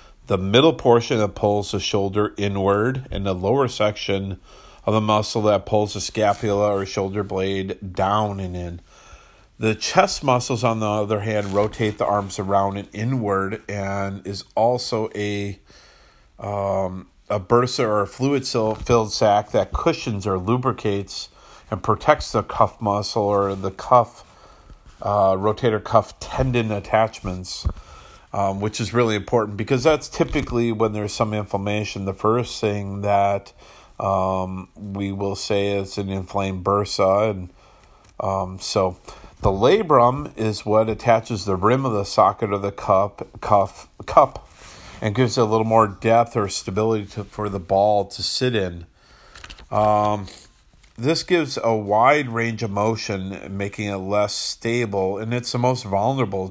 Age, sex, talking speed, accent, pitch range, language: 40-59, male, 150 wpm, American, 100-115 Hz, English